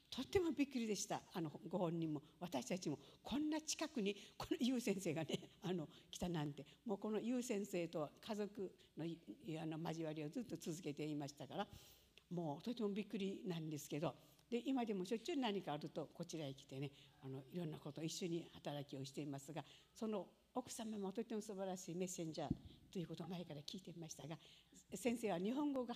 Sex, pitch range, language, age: female, 160-225 Hz, Japanese, 60-79